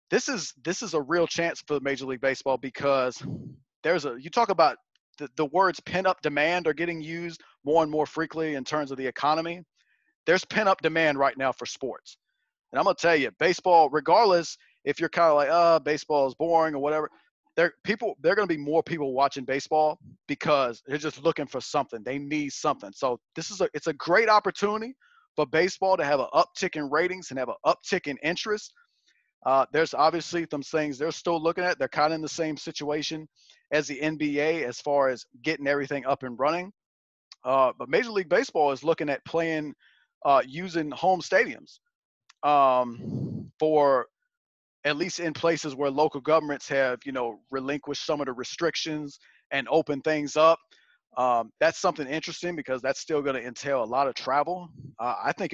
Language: English